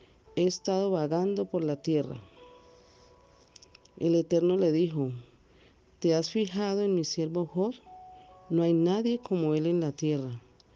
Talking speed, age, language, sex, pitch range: 140 wpm, 50-69, Spanish, female, 145-185 Hz